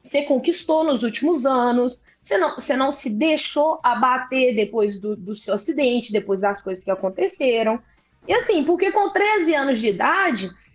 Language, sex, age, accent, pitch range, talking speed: Portuguese, female, 20-39, Brazilian, 235-315 Hz, 160 wpm